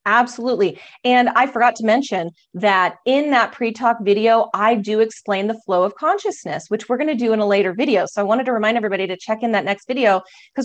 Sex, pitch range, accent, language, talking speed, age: female, 205-255 Hz, American, English, 225 wpm, 30-49